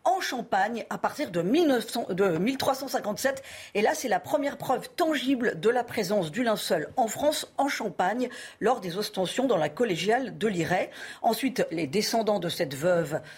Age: 50-69